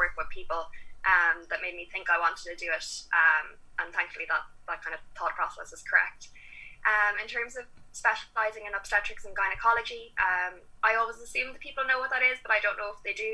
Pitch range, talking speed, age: 175-205 Hz, 220 wpm, 10-29